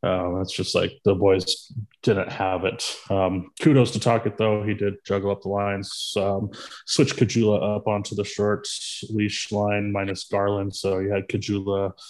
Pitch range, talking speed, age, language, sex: 95-105 Hz, 175 wpm, 20-39, English, male